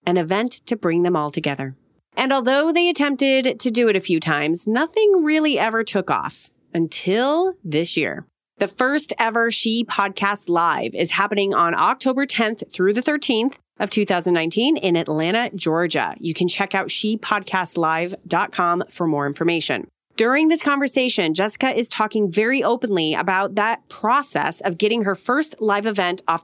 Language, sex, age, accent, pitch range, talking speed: English, female, 30-49, American, 180-245 Hz, 160 wpm